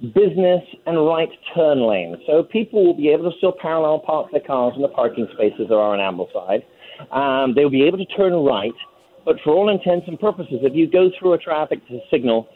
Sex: male